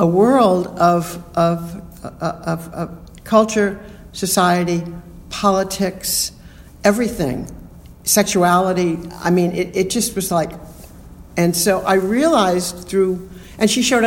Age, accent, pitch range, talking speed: 60-79, American, 160-195 Hz, 115 wpm